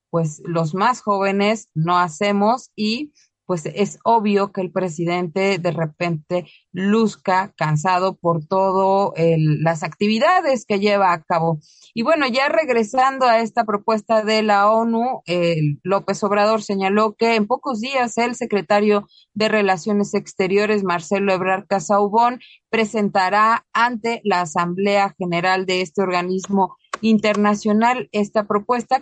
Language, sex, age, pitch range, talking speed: Spanish, female, 30-49, 185-225 Hz, 130 wpm